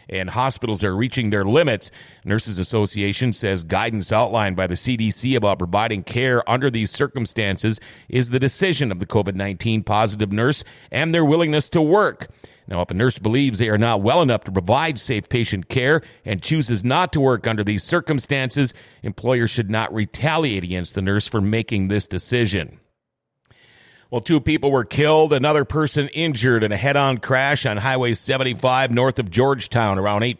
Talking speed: 170 wpm